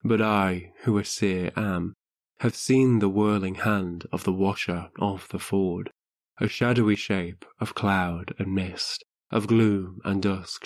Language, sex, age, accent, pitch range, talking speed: English, male, 20-39, British, 90-105 Hz, 160 wpm